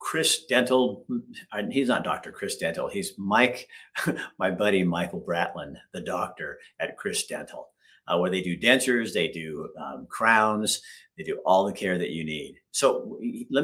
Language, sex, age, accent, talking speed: English, male, 50-69, American, 165 wpm